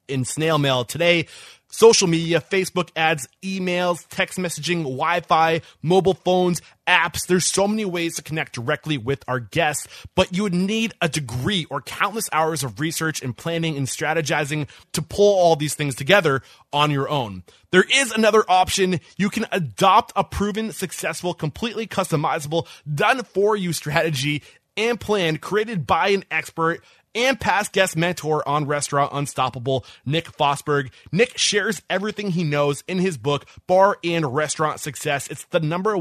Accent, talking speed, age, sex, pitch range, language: American, 160 wpm, 20-39, male, 140-185 Hz, English